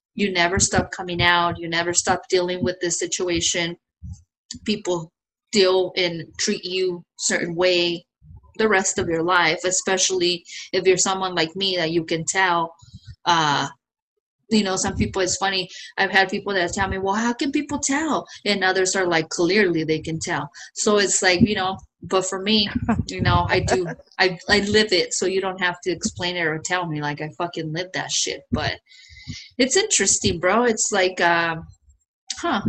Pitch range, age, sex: 175-220 Hz, 30-49, female